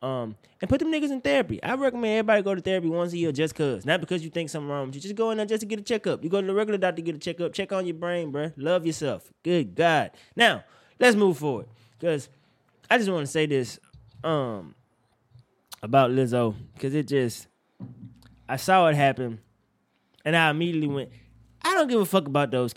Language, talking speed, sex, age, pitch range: English, 225 wpm, male, 20-39, 130-185 Hz